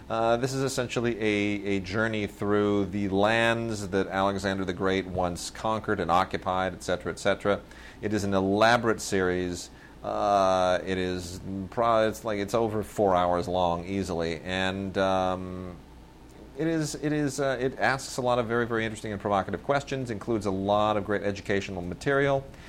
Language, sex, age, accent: English, male, 40-59, American